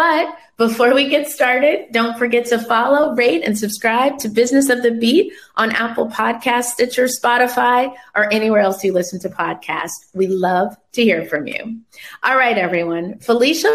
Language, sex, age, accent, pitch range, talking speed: English, female, 30-49, American, 190-255 Hz, 170 wpm